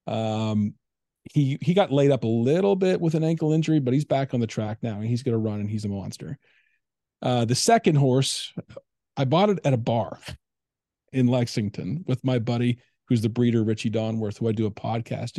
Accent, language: American, English